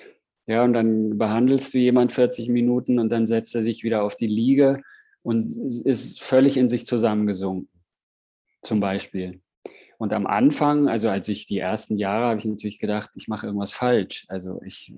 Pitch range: 110-120 Hz